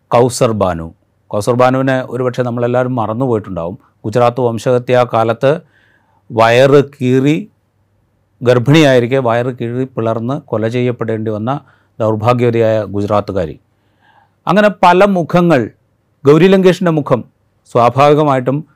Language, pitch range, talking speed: Malayalam, 110-145 Hz, 85 wpm